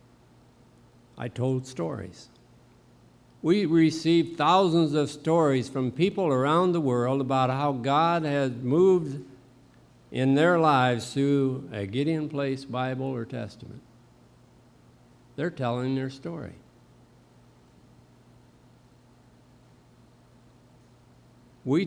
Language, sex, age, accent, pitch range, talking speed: English, male, 60-79, American, 120-145 Hz, 90 wpm